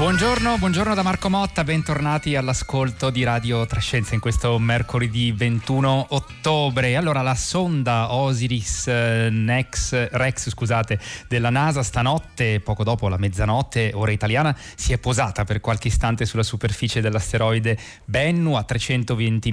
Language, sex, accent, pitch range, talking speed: Italian, male, native, 110-125 Hz, 125 wpm